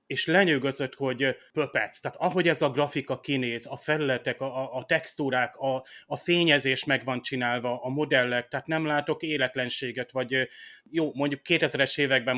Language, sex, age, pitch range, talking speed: Hungarian, male, 30-49, 125-145 Hz, 155 wpm